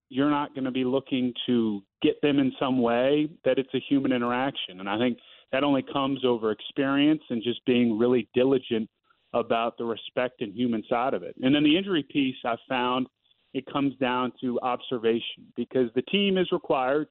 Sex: male